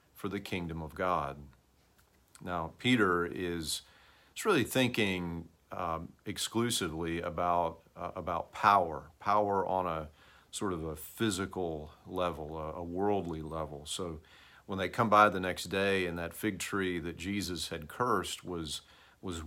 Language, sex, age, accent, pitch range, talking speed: English, male, 40-59, American, 80-100 Hz, 140 wpm